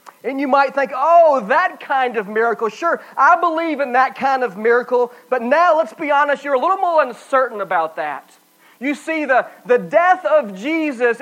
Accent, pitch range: American, 250-315 Hz